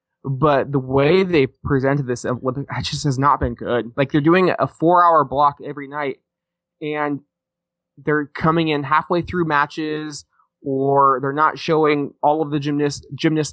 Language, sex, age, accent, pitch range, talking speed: English, male, 20-39, American, 130-155 Hz, 165 wpm